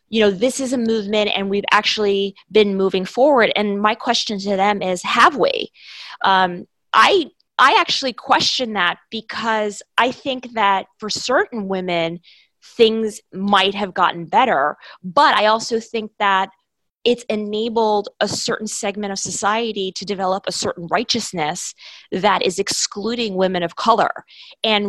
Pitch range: 190-225 Hz